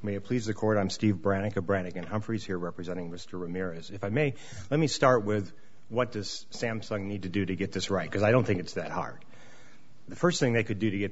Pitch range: 100-125 Hz